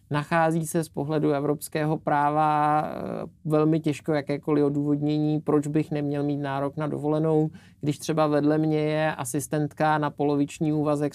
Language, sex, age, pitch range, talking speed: Czech, male, 50-69, 135-155 Hz, 140 wpm